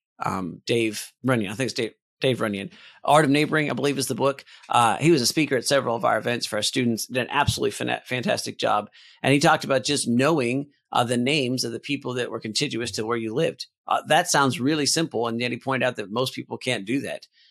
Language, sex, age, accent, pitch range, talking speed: English, male, 40-59, American, 110-135 Hz, 245 wpm